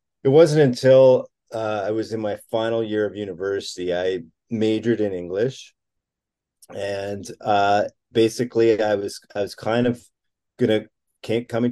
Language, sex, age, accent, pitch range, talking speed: English, male, 30-49, American, 95-115 Hz, 140 wpm